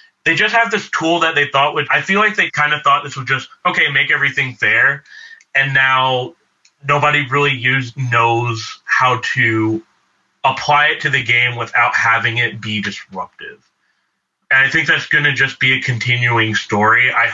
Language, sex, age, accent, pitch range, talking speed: English, male, 30-49, American, 115-150 Hz, 180 wpm